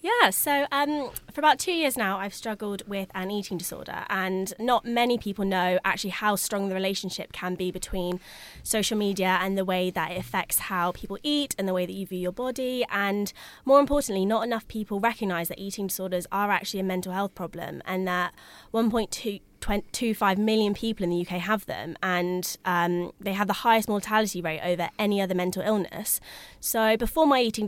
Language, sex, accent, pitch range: English, female, British, 185-225 Hz